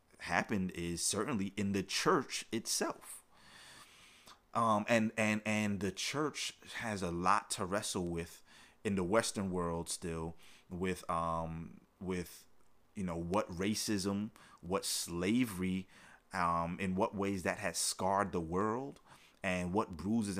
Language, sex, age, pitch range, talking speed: English, male, 30-49, 85-100 Hz, 130 wpm